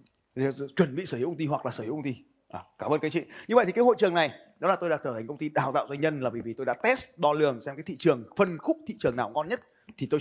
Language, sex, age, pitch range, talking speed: Vietnamese, male, 20-39, 130-170 Hz, 330 wpm